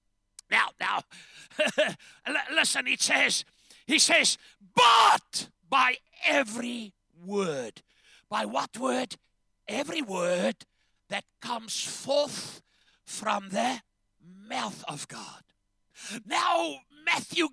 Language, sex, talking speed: English, male, 90 wpm